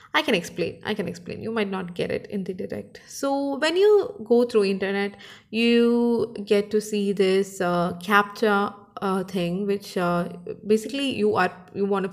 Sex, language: female, Malayalam